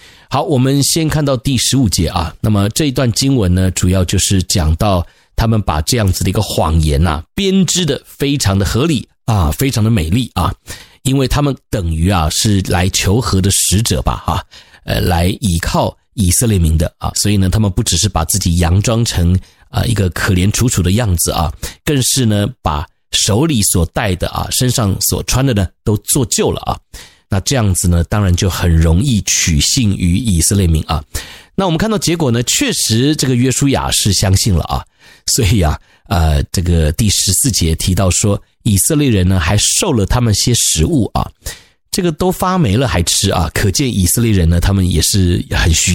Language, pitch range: Chinese, 90-120 Hz